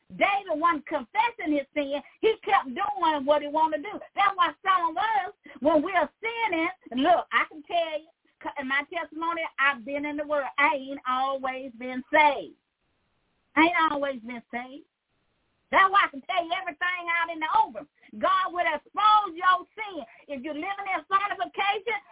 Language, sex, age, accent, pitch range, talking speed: English, female, 40-59, American, 305-390 Hz, 180 wpm